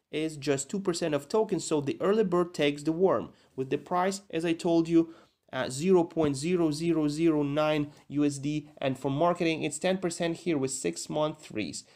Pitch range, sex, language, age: 135-165 Hz, male, Russian, 30-49